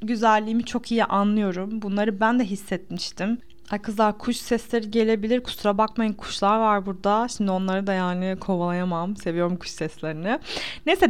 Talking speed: 145 wpm